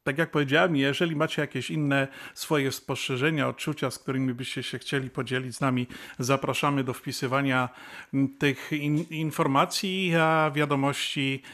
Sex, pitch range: male, 130-155 Hz